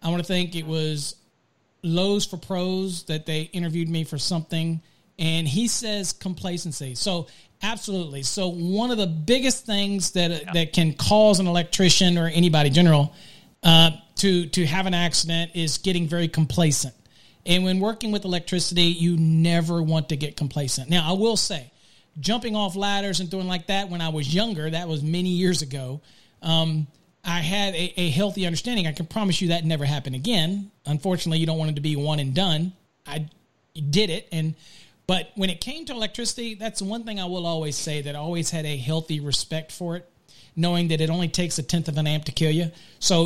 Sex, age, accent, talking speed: male, 40-59, American, 200 wpm